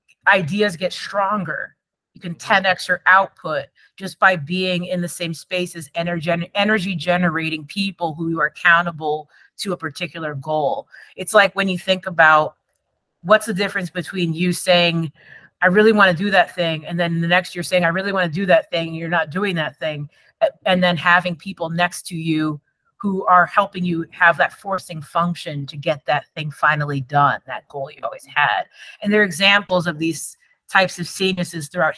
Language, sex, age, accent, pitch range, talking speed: English, female, 30-49, American, 160-185 Hz, 190 wpm